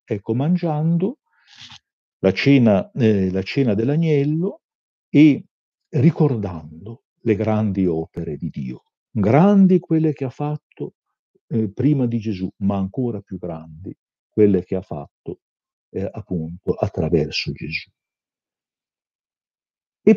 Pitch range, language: 95-160 Hz, Italian